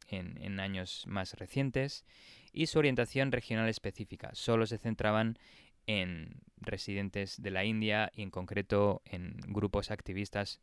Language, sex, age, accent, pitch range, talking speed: Spanish, male, 20-39, Spanish, 100-125 Hz, 135 wpm